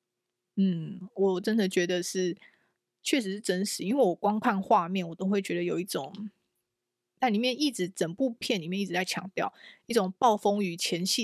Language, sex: Chinese, female